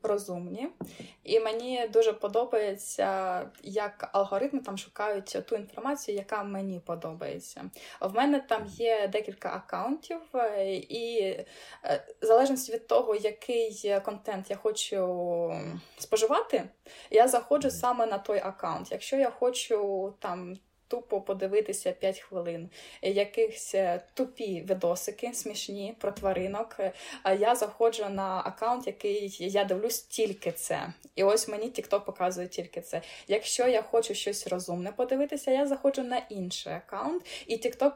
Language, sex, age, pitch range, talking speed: Ukrainian, female, 20-39, 195-245 Hz, 125 wpm